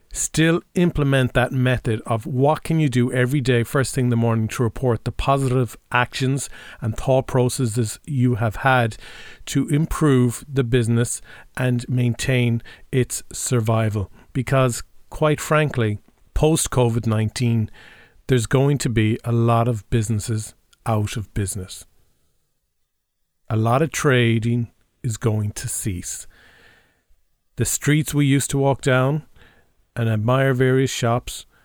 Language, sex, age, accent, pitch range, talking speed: English, male, 40-59, Irish, 110-130 Hz, 135 wpm